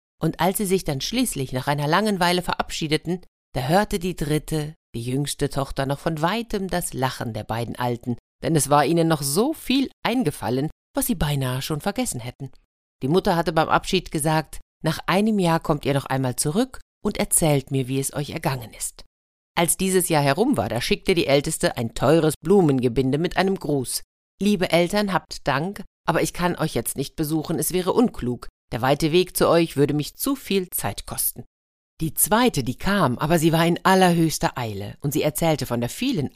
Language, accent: German, German